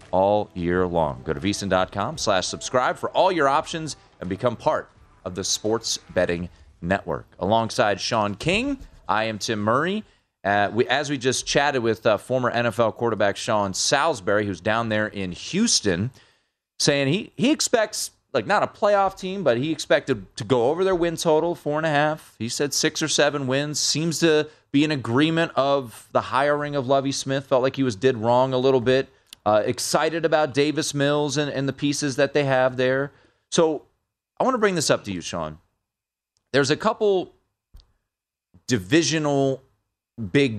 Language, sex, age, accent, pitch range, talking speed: English, male, 30-49, American, 105-150 Hz, 175 wpm